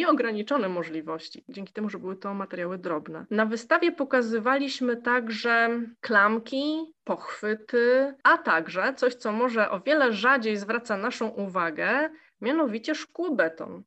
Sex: female